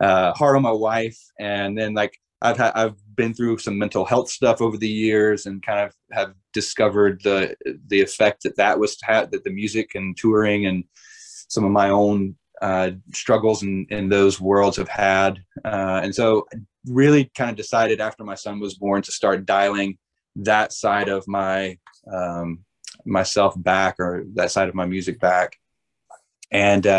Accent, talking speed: American, 180 wpm